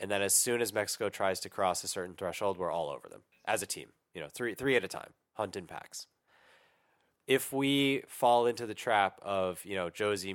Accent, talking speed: American, 225 wpm